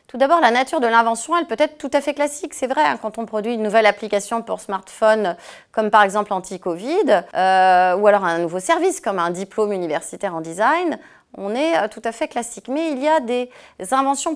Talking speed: 215 wpm